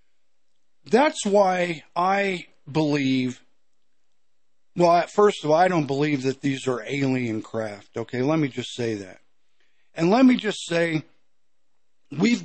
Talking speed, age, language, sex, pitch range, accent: 135 wpm, 50-69, English, male, 140-190 Hz, American